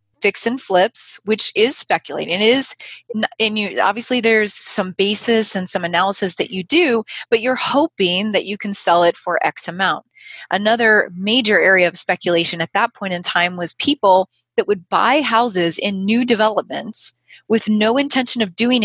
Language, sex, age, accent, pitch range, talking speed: English, female, 30-49, American, 190-235 Hz, 160 wpm